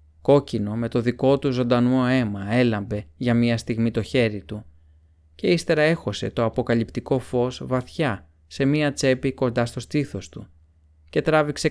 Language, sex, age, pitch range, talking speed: Greek, male, 30-49, 85-135 Hz, 155 wpm